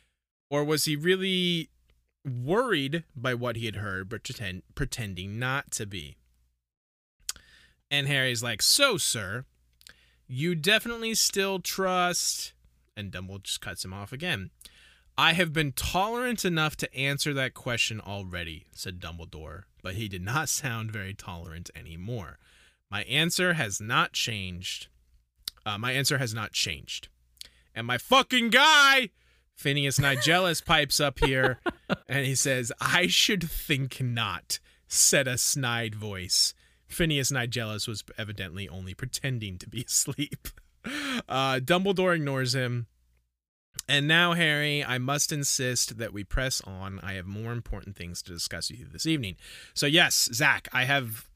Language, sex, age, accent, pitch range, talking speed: English, male, 20-39, American, 95-150 Hz, 140 wpm